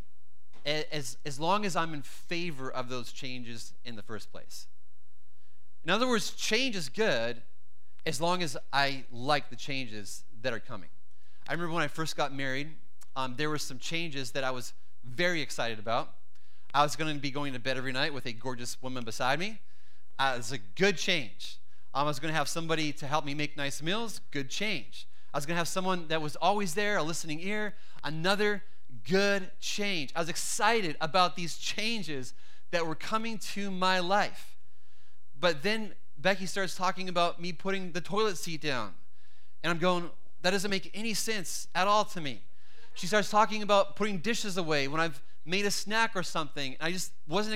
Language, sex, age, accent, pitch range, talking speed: English, male, 30-49, American, 125-190 Hz, 195 wpm